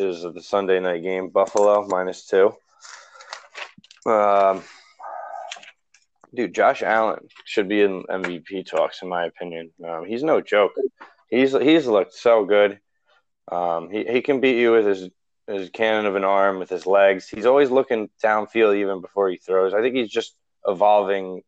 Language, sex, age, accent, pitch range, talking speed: English, male, 20-39, American, 95-115 Hz, 160 wpm